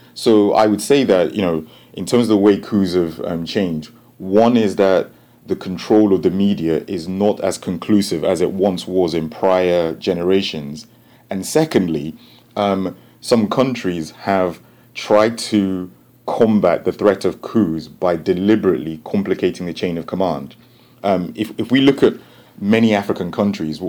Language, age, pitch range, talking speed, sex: English, 30-49, 90-110 Hz, 160 wpm, male